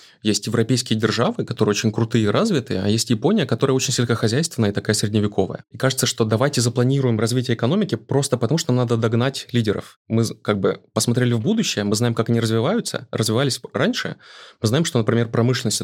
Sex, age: male, 20-39